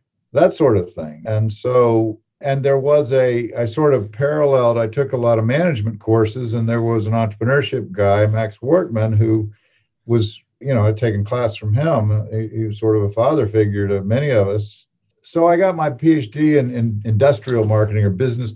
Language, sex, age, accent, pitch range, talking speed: English, male, 50-69, American, 110-135 Hz, 195 wpm